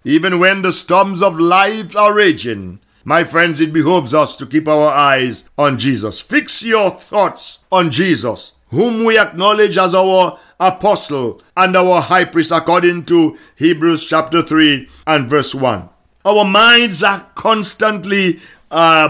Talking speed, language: 150 wpm, English